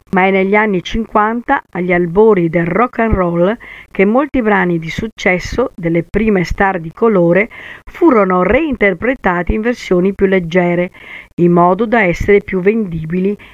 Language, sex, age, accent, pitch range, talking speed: Italian, female, 50-69, native, 175-230 Hz, 145 wpm